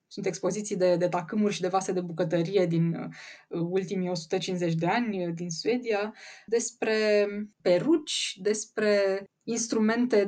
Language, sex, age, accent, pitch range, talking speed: Romanian, female, 20-39, native, 185-230 Hz, 125 wpm